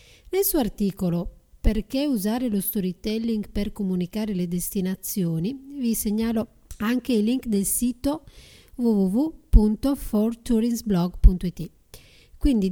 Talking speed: 95 wpm